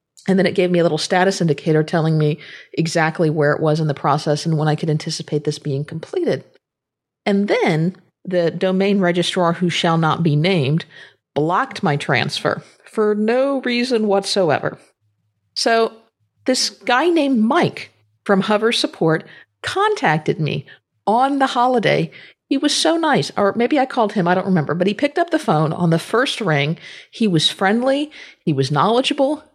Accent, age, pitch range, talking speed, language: American, 50-69, 160-240 Hz, 170 wpm, English